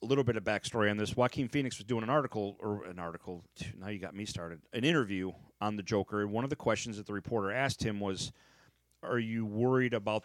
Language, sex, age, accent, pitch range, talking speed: English, male, 40-59, American, 100-120 Hz, 240 wpm